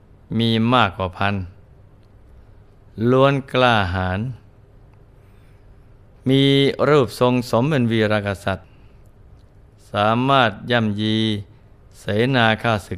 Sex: male